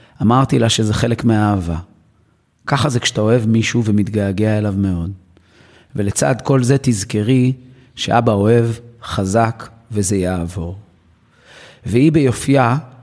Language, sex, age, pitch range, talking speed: Hebrew, male, 30-49, 105-130 Hz, 110 wpm